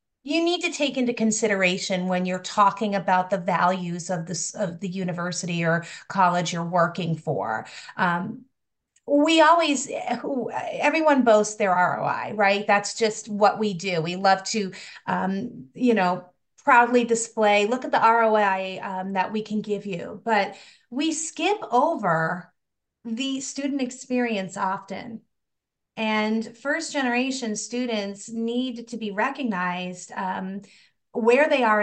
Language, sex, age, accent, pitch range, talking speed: English, female, 30-49, American, 190-235 Hz, 135 wpm